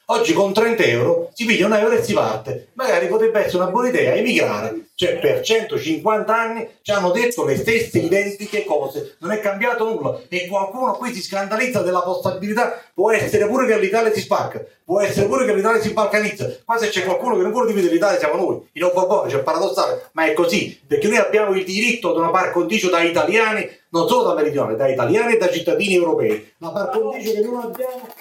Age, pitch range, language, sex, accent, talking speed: 30-49, 180-230 Hz, Italian, male, native, 210 wpm